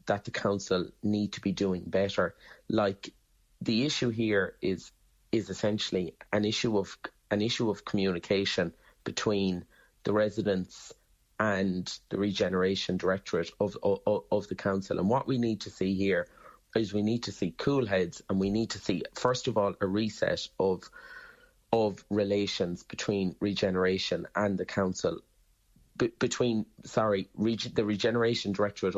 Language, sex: English, male